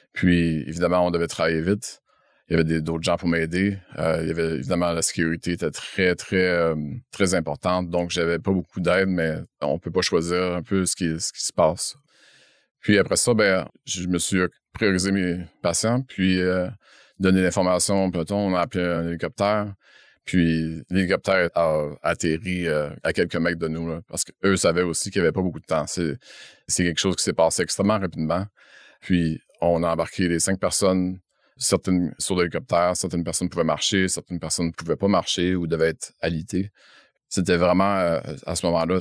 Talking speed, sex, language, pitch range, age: 195 wpm, male, French, 85-95 Hz, 30-49